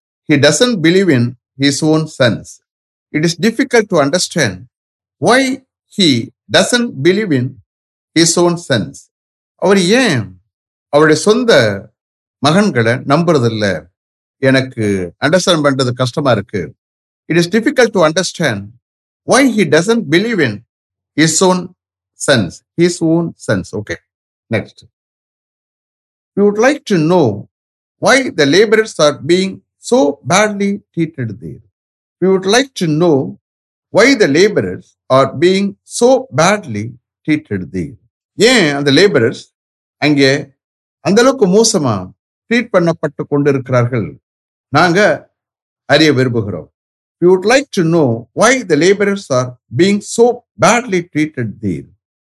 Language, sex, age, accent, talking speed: English, male, 50-69, Indian, 95 wpm